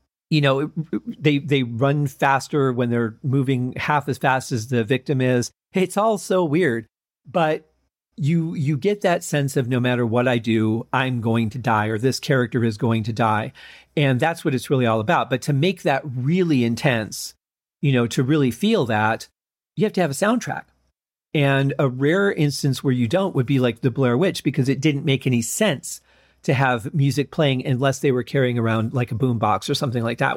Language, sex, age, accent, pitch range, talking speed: English, male, 40-59, American, 120-155 Hz, 205 wpm